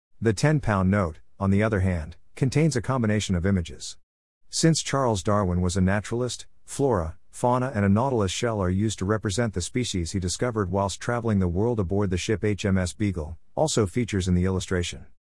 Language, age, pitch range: English, 50-69, 90-115 Hz